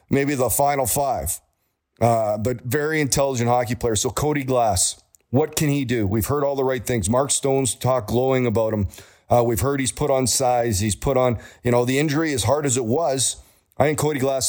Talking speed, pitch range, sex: 215 wpm, 115-135 Hz, male